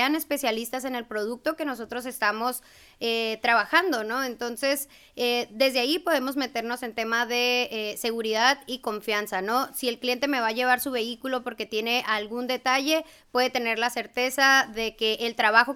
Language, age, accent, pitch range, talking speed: Spanish, 20-39, Mexican, 220-260 Hz, 170 wpm